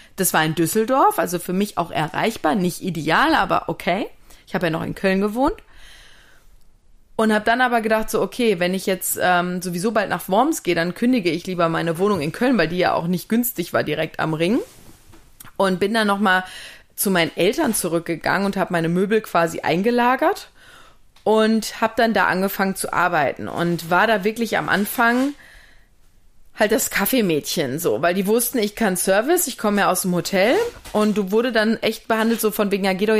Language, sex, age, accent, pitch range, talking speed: German, female, 30-49, German, 180-245 Hz, 195 wpm